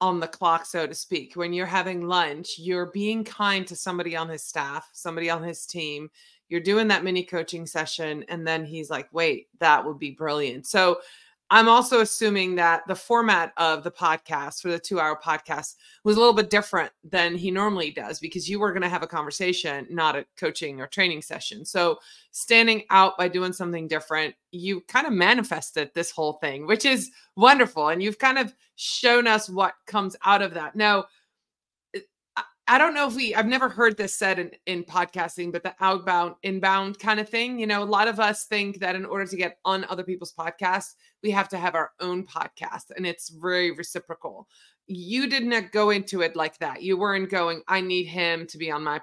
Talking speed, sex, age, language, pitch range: 205 wpm, female, 30-49, English, 170-215 Hz